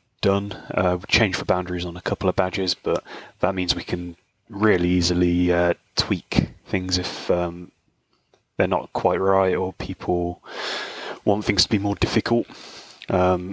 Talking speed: 160 wpm